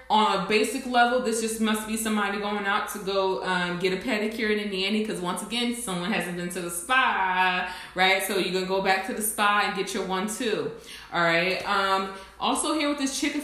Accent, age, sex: American, 20-39, female